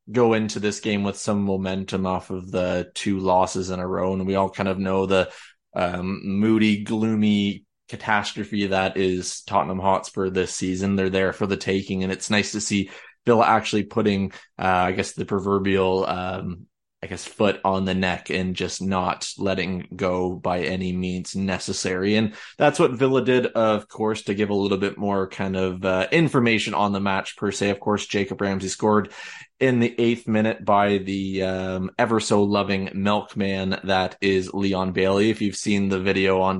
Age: 20-39